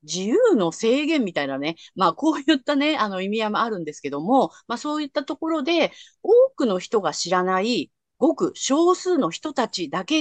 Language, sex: Japanese, female